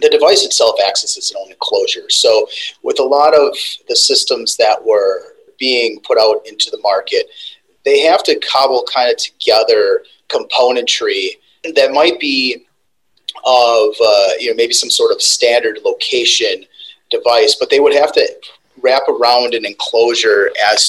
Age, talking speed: 30-49, 155 wpm